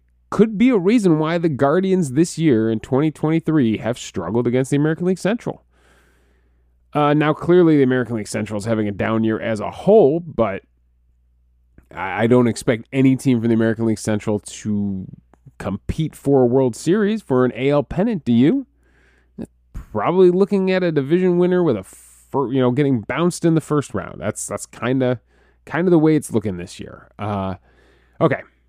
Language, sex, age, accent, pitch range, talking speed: English, male, 30-49, American, 105-165 Hz, 180 wpm